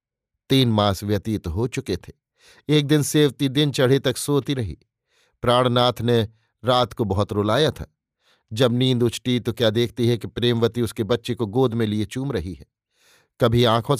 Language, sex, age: Hindi, male, 50-69